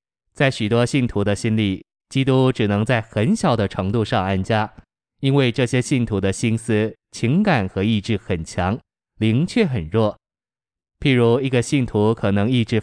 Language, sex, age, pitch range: Chinese, male, 20-39, 100-130 Hz